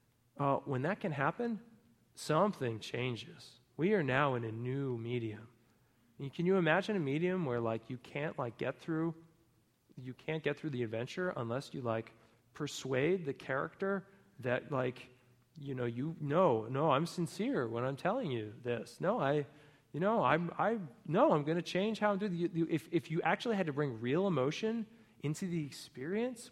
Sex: male